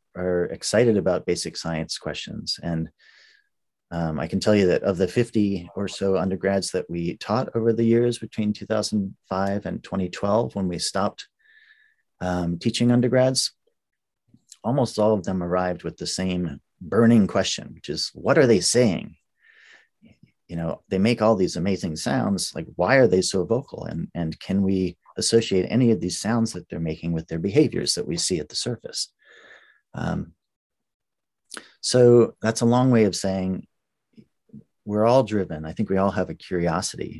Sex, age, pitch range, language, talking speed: male, 40-59, 90-110 Hz, English, 170 wpm